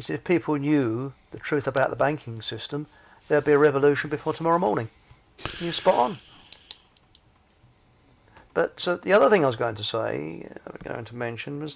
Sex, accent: male, British